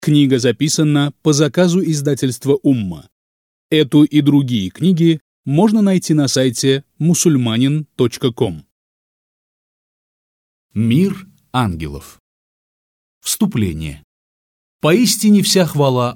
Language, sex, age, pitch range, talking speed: Russian, male, 30-49, 110-150 Hz, 80 wpm